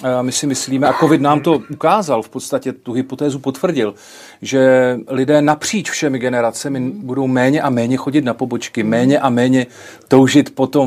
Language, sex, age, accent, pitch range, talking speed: English, male, 40-59, Czech, 120-145 Hz, 170 wpm